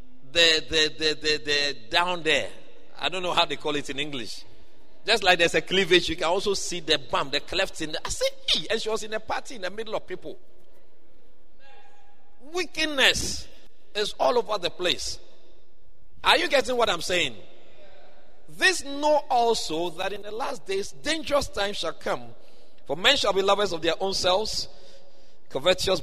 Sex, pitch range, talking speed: male, 180-260 Hz, 180 wpm